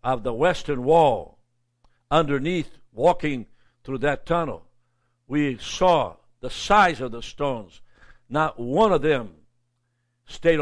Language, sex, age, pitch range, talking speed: English, male, 60-79, 130-190 Hz, 120 wpm